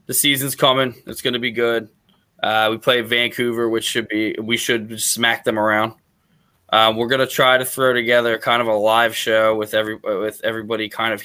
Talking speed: 210 wpm